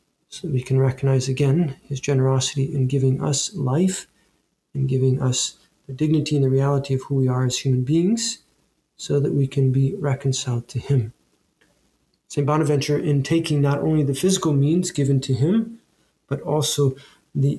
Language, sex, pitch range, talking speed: English, male, 130-150 Hz, 170 wpm